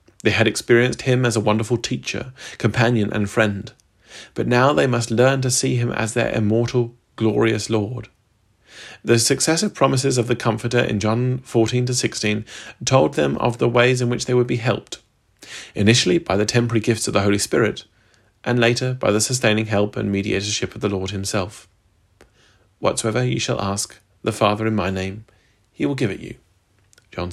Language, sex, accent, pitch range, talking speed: English, male, British, 100-120 Hz, 180 wpm